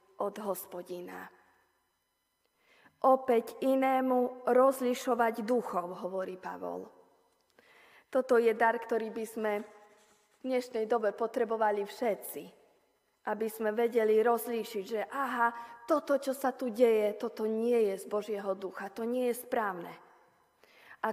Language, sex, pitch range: Slovak, female, 200-240 Hz